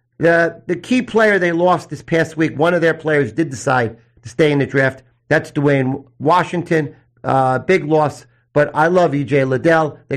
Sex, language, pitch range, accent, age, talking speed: male, English, 140-190 Hz, American, 50-69, 190 wpm